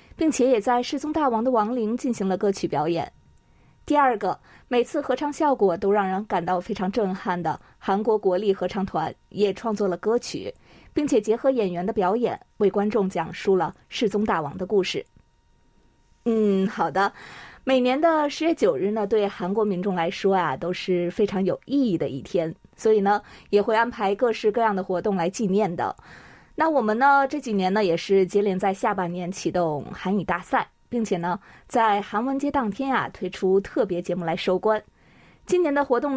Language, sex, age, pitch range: Chinese, female, 20-39, 185-230 Hz